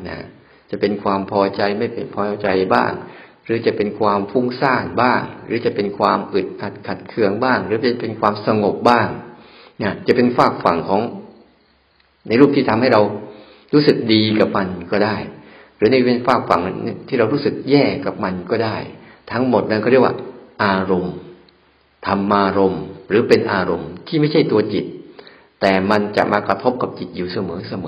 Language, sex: Thai, male